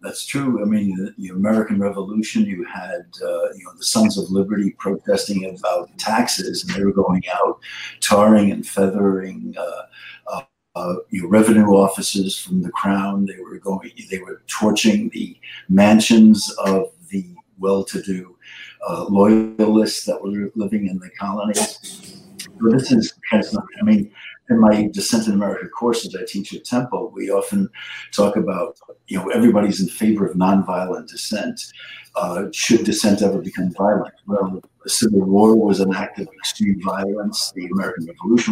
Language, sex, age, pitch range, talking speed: English, male, 60-79, 95-110 Hz, 160 wpm